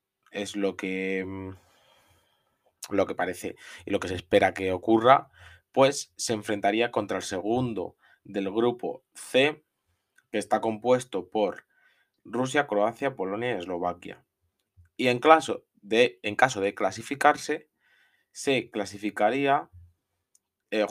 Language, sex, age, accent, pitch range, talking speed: Spanish, male, 20-39, Spanish, 100-125 Hz, 110 wpm